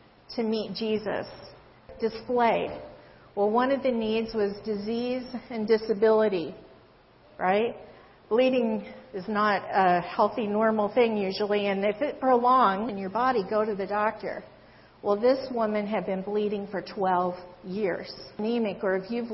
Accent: American